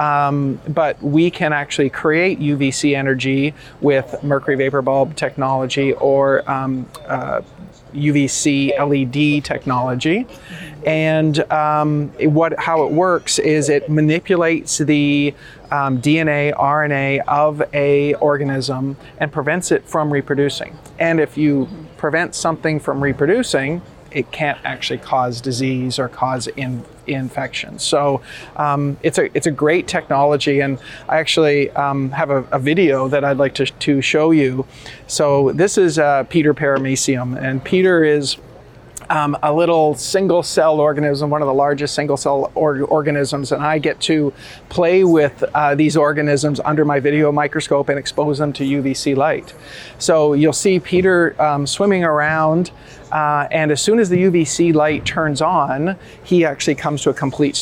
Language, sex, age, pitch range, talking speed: English, male, 30-49, 140-155 Hz, 150 wpm